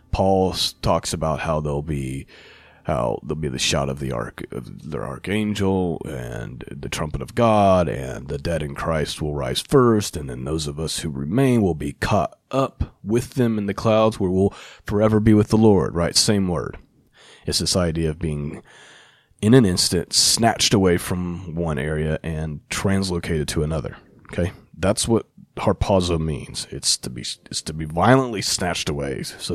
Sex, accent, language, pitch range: male, American, English, 80-105 Hz